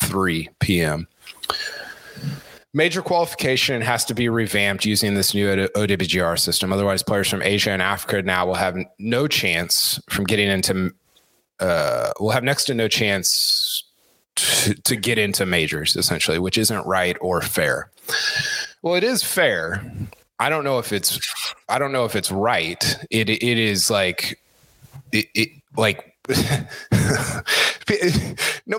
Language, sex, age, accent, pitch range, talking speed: English, male, 30-49, American, 95-125 Hz, 145 wpm